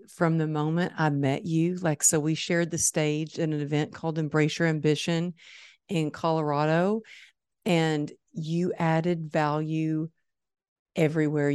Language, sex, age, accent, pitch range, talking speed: English, female, 50-69, American, 150-180 Hz, 135 wpm